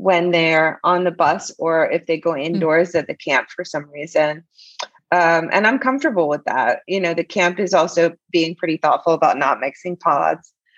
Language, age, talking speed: English, 30-49, 195 wpm